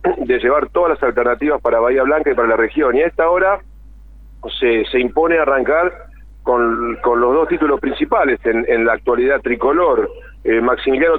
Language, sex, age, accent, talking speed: Spanish, male, 40-59, Argentinian, 175 wpm